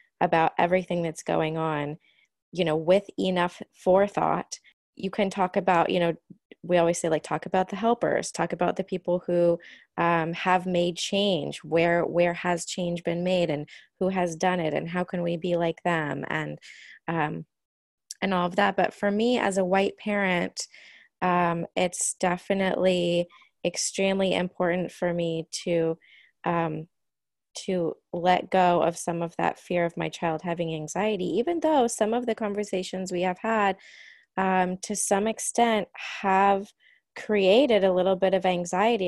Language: English